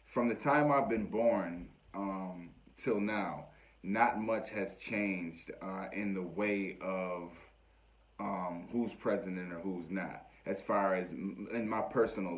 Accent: American